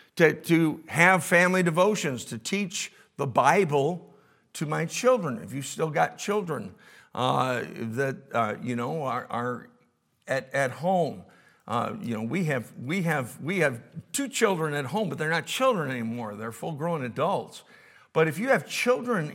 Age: 50-69